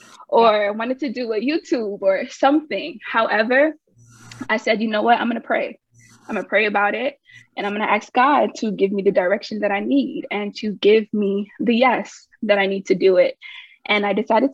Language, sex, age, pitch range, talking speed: English, female, 20-39, 205-275 Hz, 225 wpm